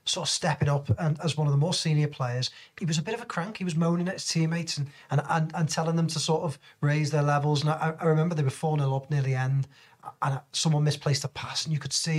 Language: English